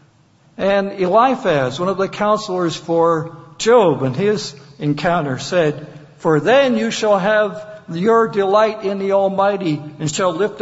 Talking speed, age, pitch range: 140 wpm, 60-79, 150-195 Hz